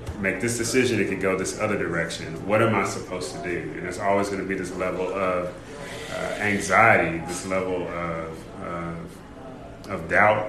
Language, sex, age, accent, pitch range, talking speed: English, male, 30-49, American, 95-115 Hz, 185 wpm